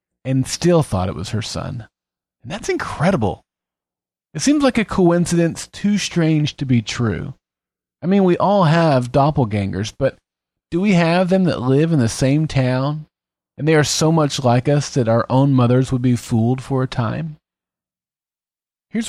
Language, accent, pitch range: English, American, 110-160 Hz